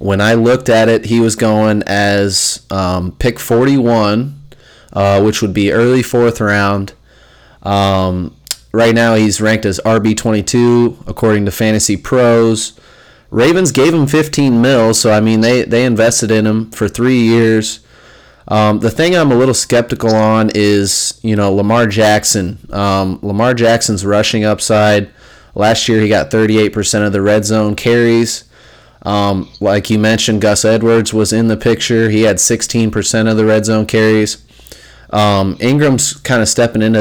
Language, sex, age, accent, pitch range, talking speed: English, male, 30-49, American, 105-120 Hz, 160 wpm